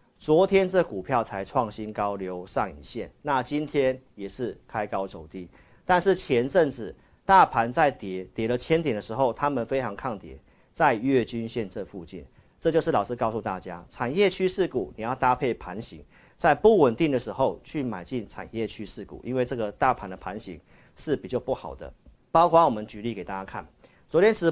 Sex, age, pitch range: male, 50-69, 100-135 Hz